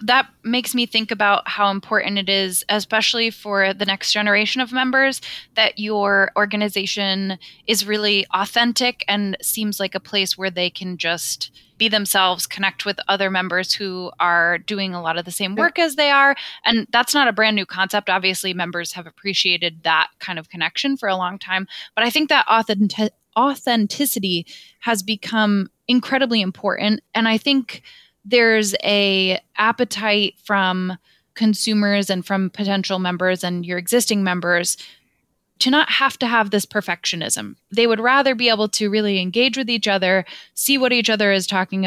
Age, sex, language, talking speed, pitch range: 20-39, female, English, 170 wpm, 185-225 Hz